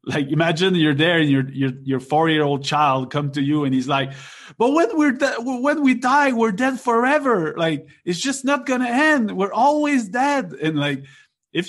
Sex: male